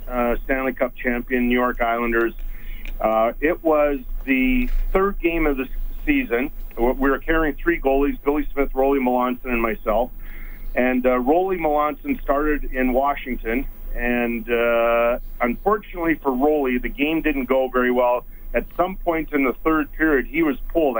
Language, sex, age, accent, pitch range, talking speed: English, male, 40-59, American, 125-150 Hz, 155 wpm